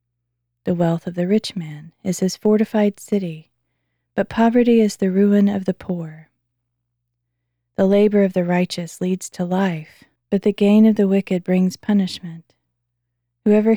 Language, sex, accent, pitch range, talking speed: English, female, American, 150-195 Hz, 155 wpm